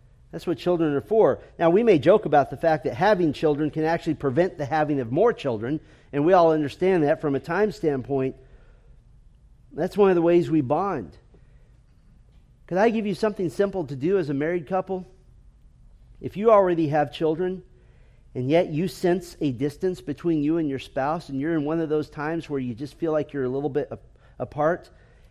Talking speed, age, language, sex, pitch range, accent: 200 wpm, 40-59, English, male, 135-175 Hz, American